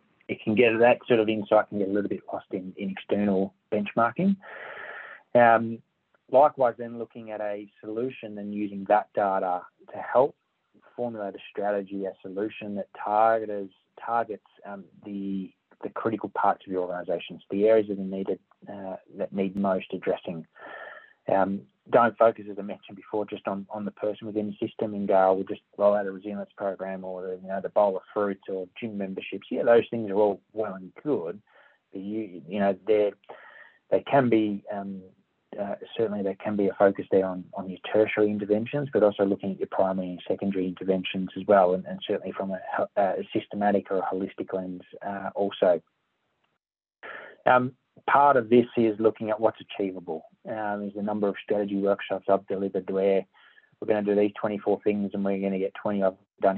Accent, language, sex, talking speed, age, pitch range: Australian, English, male, 190 wpm, 30-49, 95-110 Hz